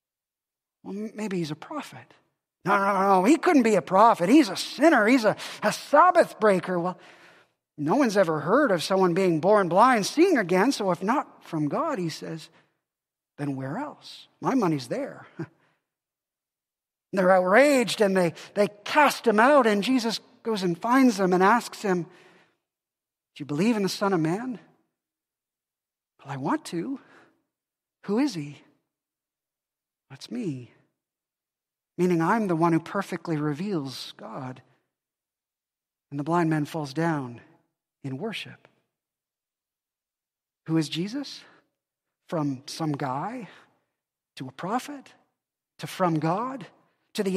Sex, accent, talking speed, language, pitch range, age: male, American, 140 wpm, English, 165-245 Hz, 40-59